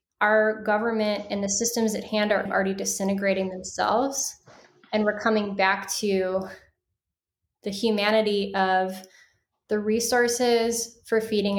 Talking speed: 120 wpm